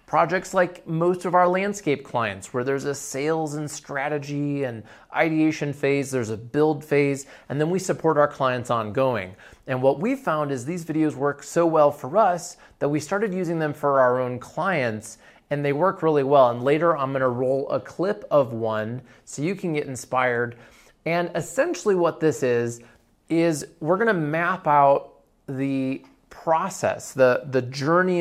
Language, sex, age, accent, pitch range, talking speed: English, male, 30-49, American, 125-170 Hz, 175 wpm